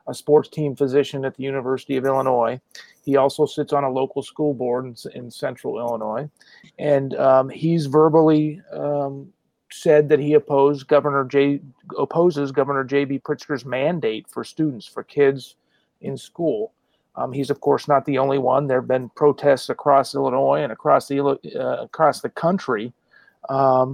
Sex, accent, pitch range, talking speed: male, American, 135-150 Hz, 155 wpm